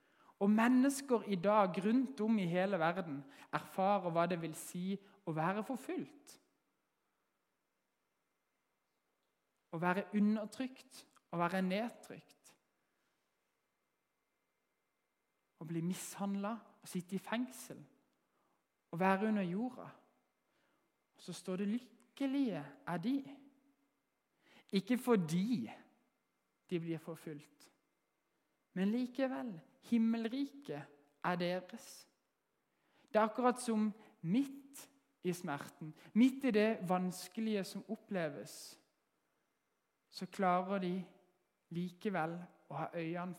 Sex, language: male, English